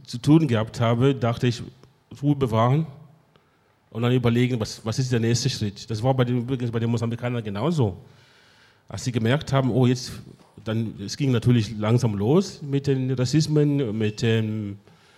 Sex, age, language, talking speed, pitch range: male, 30-49, German, 160 wpm, 110-130 Hz